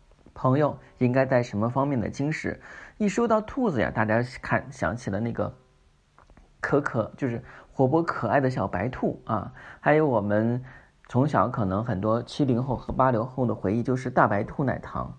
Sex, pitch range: male, 110-145 Hz